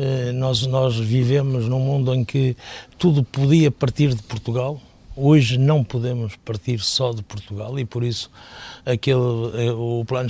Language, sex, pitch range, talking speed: Portuguese, male, 115-135 Hz, 140 wpm